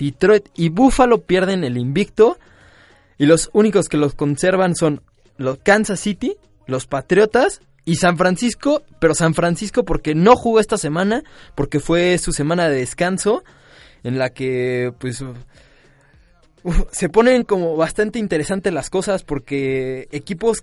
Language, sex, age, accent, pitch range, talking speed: Spanish, male, 20-39, Mexican, 140-190 Hz, 145 wpm